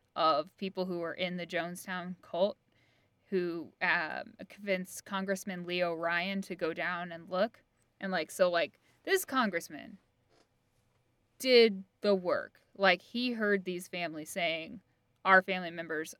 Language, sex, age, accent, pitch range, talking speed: English, female, 10-29, American, 170-210 Hz, 135 wpm